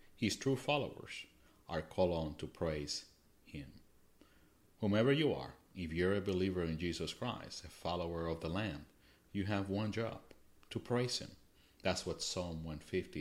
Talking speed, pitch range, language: 160 wpm, 80-95 Hz, English